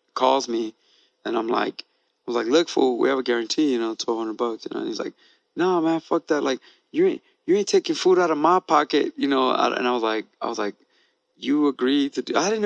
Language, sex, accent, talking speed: English, male, American, 240 wpm